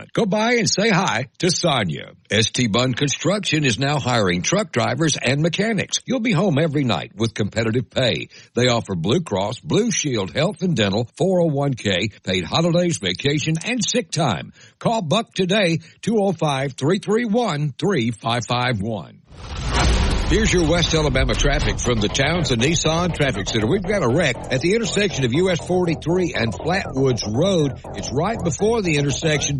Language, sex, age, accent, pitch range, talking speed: English, male, 60-79, American, 125-170 Hz, 150 wpm